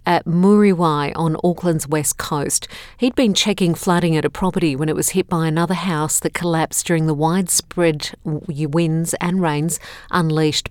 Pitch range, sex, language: 155-185 Hz, female, English